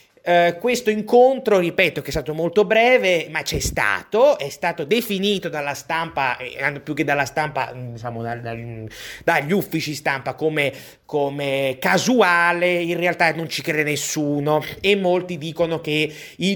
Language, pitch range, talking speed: Italian, 140-170 Hz, 150 wpm